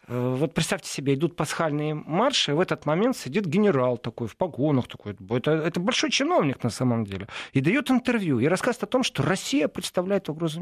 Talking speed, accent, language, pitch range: 190 wpm, native, Russian, 130-200 Hz